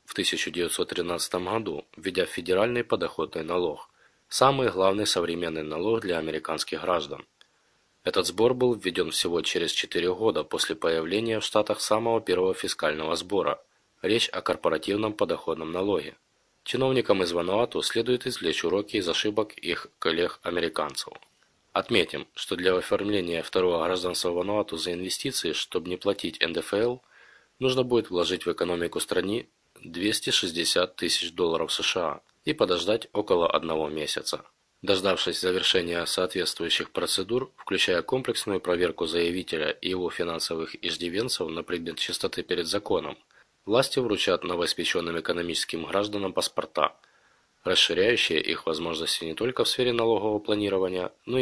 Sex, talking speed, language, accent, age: male, 125 wpm, Russian, native, 20-39